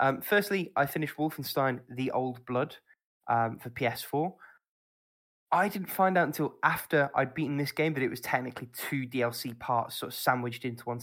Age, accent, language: 10-29, British, English